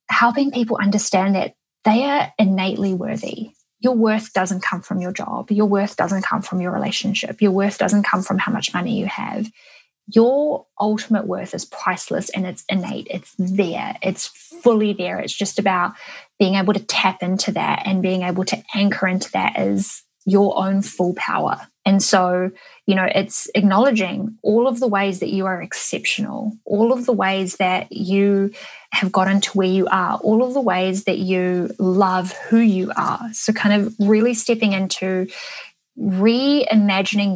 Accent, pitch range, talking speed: Australian, 190-215 Hz, 175 wpm